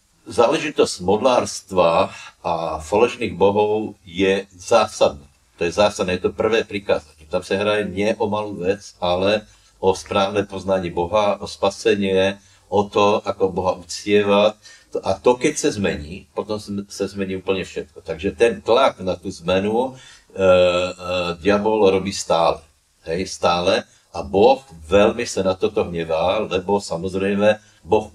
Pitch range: 90-105 Hz